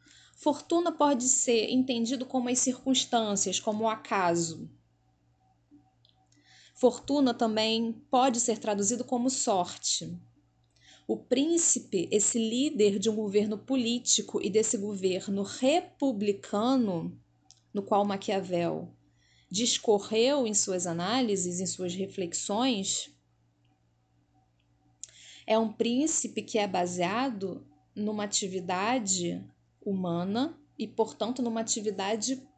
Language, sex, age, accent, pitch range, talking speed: Portuguese, female, 20-39, Brazilian, 185-250 Hz, 95 wpm